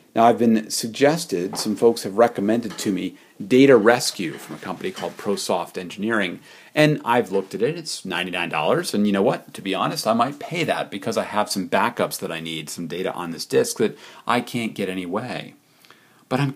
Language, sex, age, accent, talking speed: English, male, 40-59, American, 205 wpm